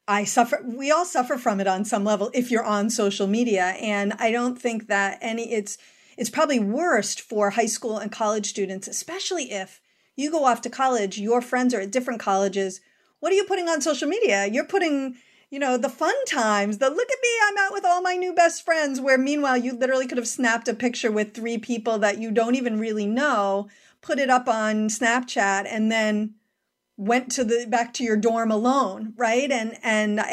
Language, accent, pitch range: English, American, 205-265 Hz